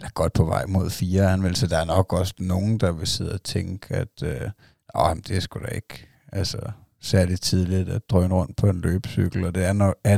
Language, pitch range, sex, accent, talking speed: Danish, 95-110 Hz, male, native, 240 wpm